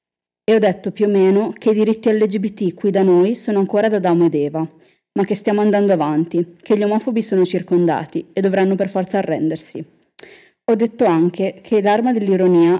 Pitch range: 170-205 Hz